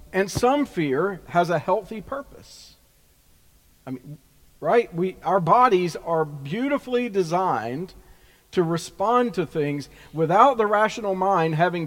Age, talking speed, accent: 50-69, 125 wpm, American